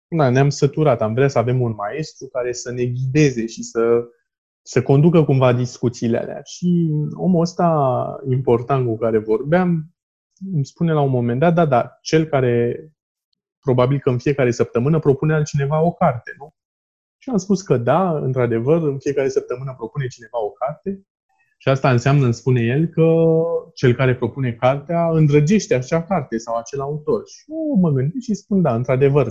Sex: male